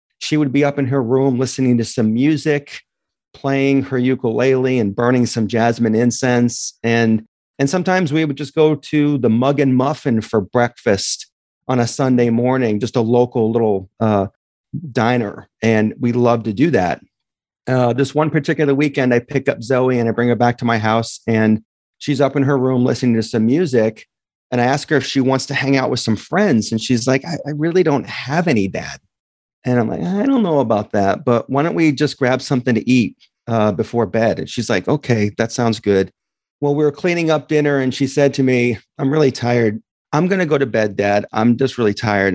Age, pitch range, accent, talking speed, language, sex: 40-59, 115-140 Hz, American, 215 wpm, English, male